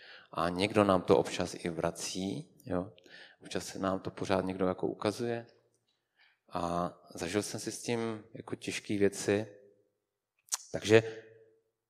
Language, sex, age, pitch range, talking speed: Czech, male, 30-49, 90-120 Hz, 125 wpm